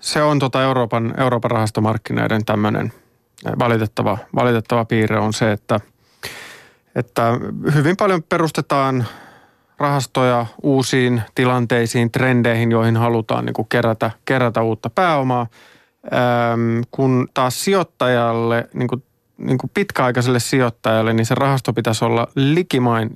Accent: native